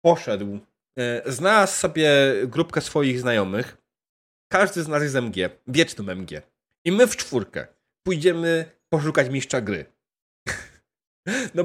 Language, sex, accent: Polish, male, native